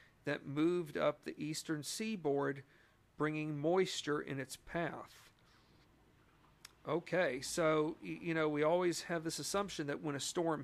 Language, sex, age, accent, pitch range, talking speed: English, male, 50-69, American, 140-155 Hz, 135 wpm